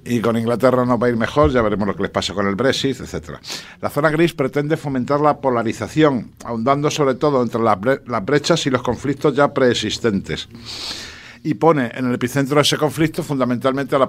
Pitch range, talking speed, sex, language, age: 120-150 Hz, 210 wpm, male, Spanish, 60-79